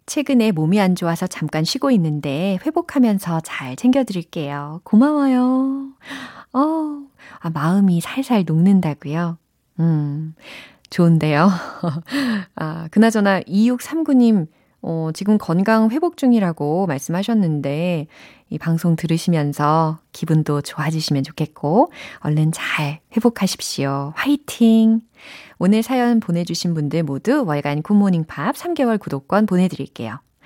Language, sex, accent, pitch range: Korean, female, native, 155-255 Hz